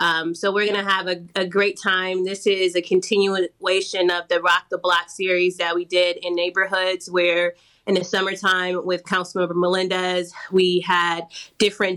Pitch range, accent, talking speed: 175-200 Hz, American, 180 wpm